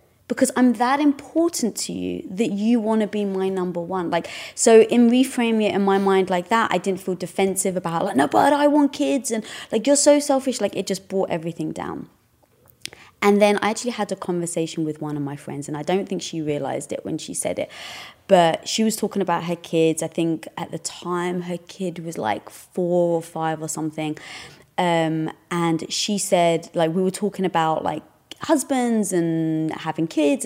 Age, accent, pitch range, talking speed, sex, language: 20-39, British, 160-215 Hz, 205 wpm, female, English